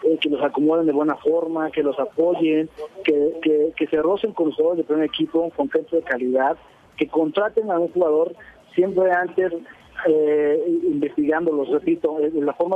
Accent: Mexican